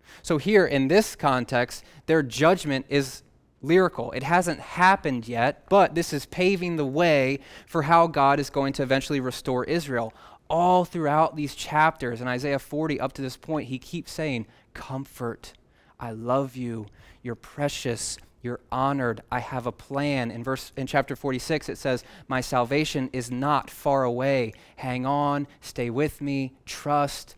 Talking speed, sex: 160 wpm, male